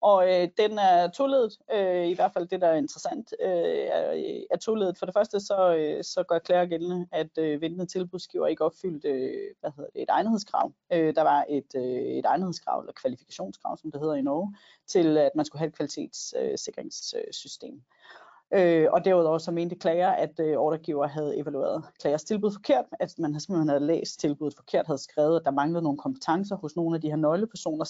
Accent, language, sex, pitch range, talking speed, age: native, Danish, female, 160-200 Hz, 195 wpm, 30-49